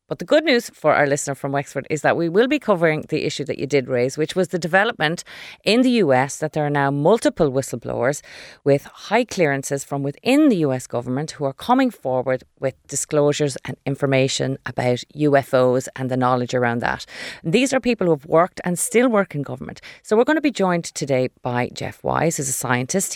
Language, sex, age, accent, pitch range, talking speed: English, female, 30-49, Irish, 130-170 Hz, 210 wpm